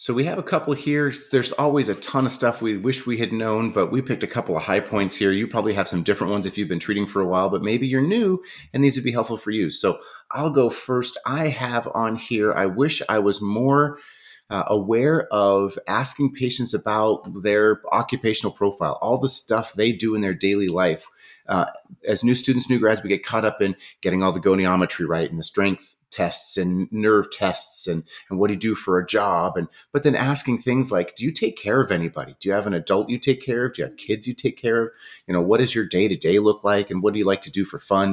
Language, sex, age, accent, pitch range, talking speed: English, male, 30-49, American, 105-145 Hz, 250 wpm